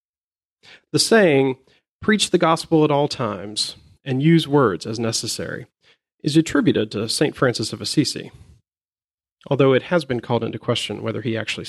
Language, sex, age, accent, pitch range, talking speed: English, male, 40-59, American, 110-145 Hz, 155 wpm